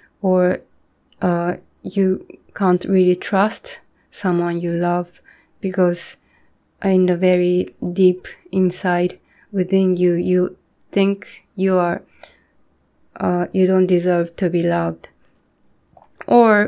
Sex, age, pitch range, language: female, 20-39, 180-200 Hz, Japanese